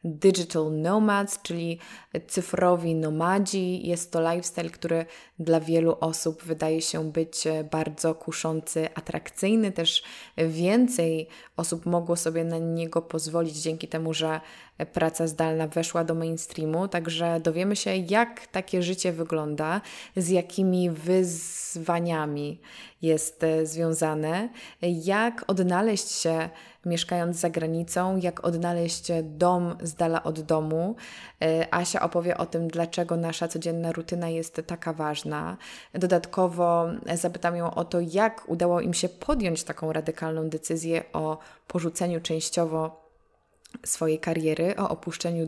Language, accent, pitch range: Polish, native, 165-180 Hz